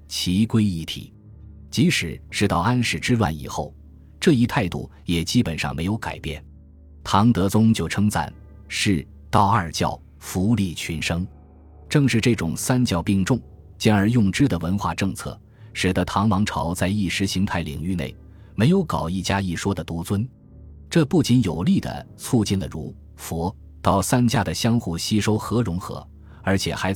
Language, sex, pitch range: Chinese, male, 80-110 Hz